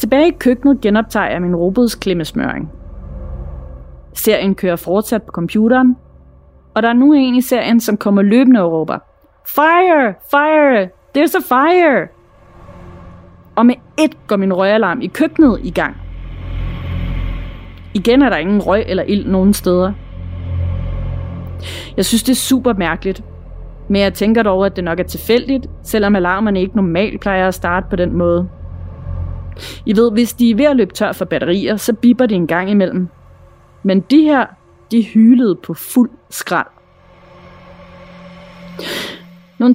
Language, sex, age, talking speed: Danish, female, 30-49, 150 wpm